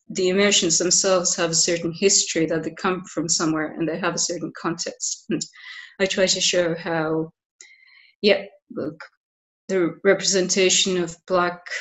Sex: female